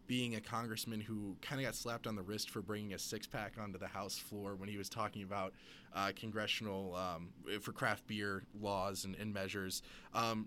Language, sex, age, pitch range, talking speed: English, male, 20-39, 100-120 Hz, 205 wpm